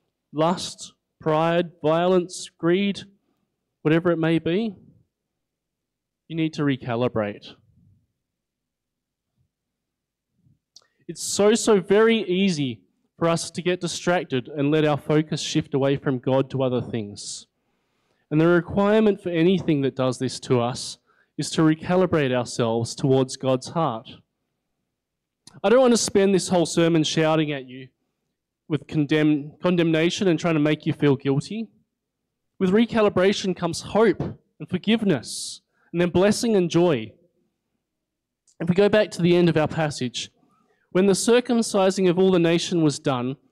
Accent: Australian